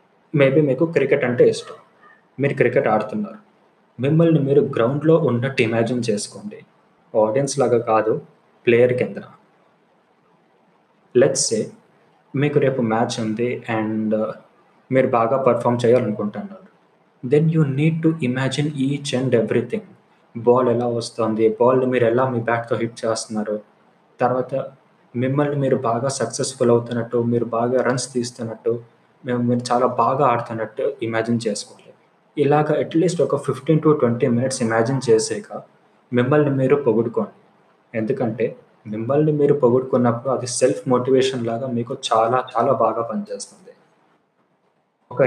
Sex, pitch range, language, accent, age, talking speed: male, 115-135 Hz, Telugu, native, 20-39, 120 wpm